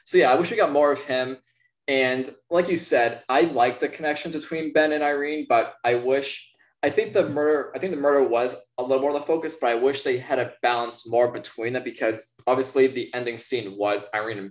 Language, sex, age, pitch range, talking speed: English, male, 20-39, 115-140 Hz, 235 wpm